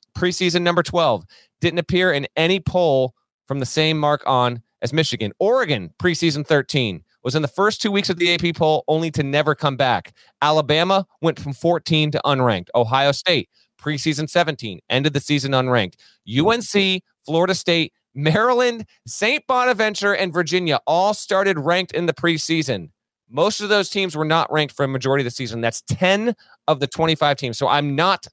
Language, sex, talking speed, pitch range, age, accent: English, male, 175 wpm, 125-170 Hz, 30-49, American